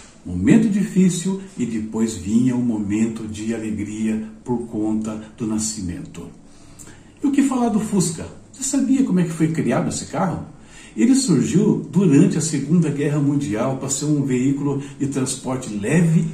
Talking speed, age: 155 wpm, 60-79